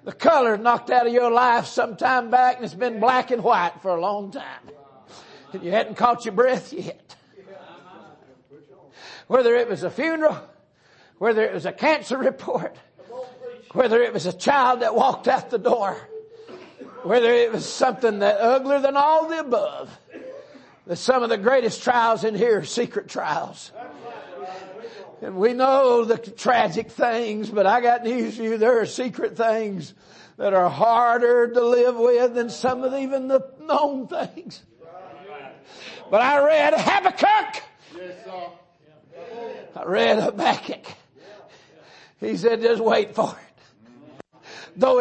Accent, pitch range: American, 225-285 Hz